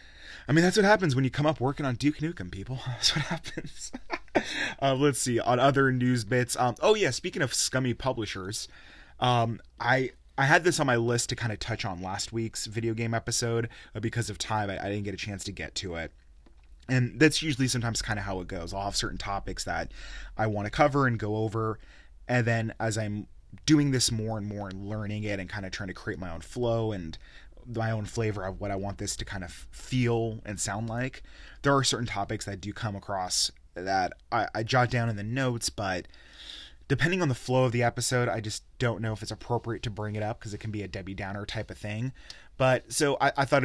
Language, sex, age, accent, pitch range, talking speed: English, male, 20-39, American, 100-125 Hz, 235 wpm